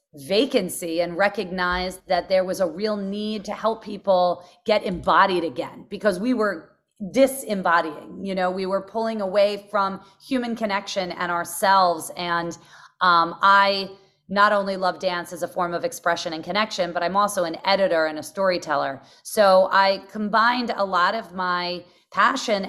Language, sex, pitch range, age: English, female, 180-210 Hz, 30-49